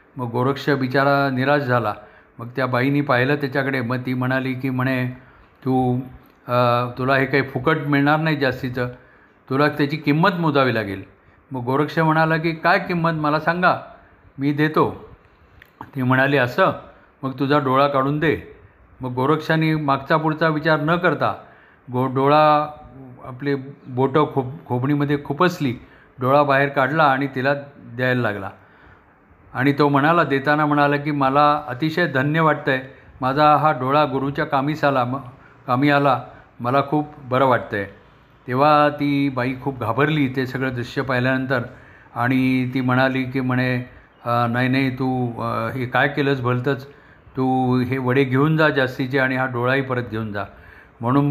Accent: native